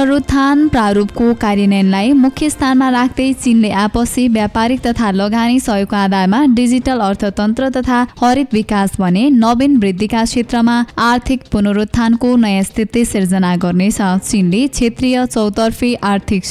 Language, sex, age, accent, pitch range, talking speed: English, female, 20-39, Indian, 205-250 Hz, 115 wpm